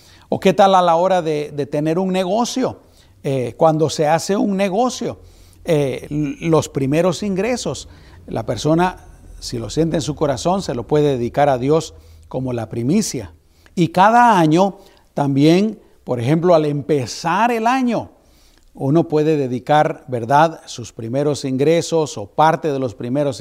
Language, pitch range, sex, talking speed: Spanish, 130-170 Hz, male, 155 wpm